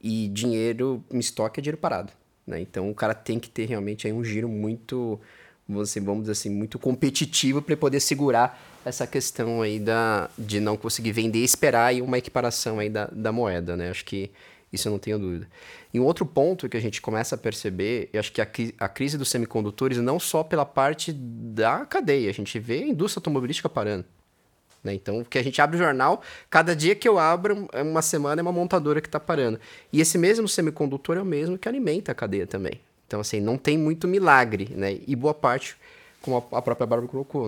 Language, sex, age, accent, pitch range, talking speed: Portuguese, male, 20-39, Brazilian, 110-145 Hz, 210 wpm